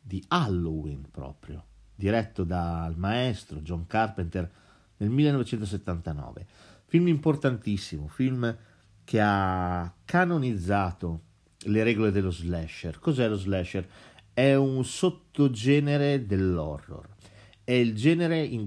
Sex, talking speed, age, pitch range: male, 100 wpm, 40-59, 95-135 Hz